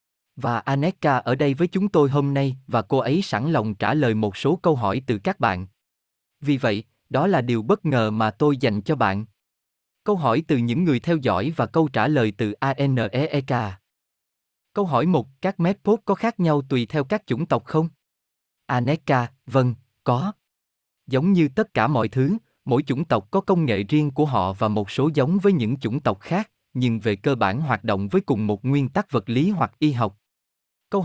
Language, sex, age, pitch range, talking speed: Vietnamese, male, 20-39, 110-160 Hz, 205 wpm